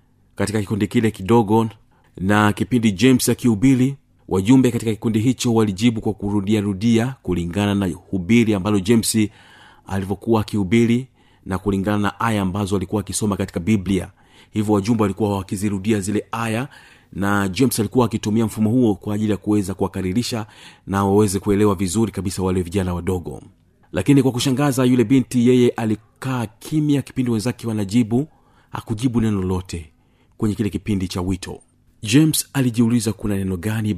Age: 40-59